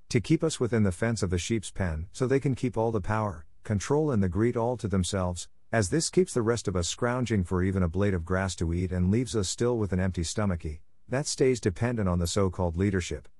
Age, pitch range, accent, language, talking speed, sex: 50-69, 90-115 Hz, American, English, 245 wpm, male